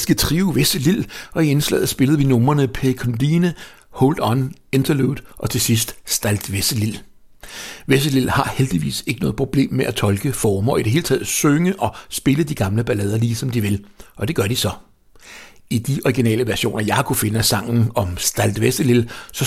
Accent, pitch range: Danish, 115-145 Hz